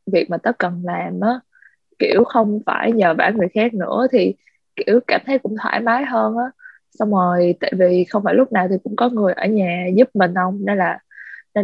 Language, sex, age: Vietnamese, female, 20-39